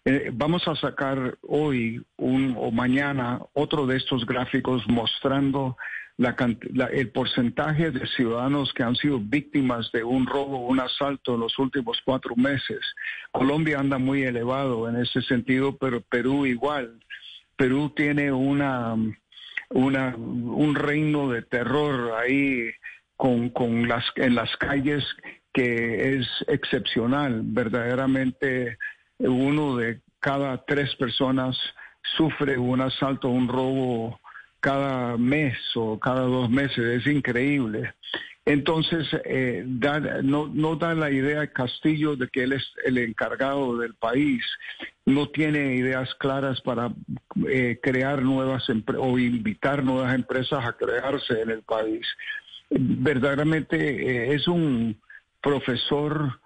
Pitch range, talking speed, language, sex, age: 125-145 Hz, 125 wpm, Spanish, male, 50-69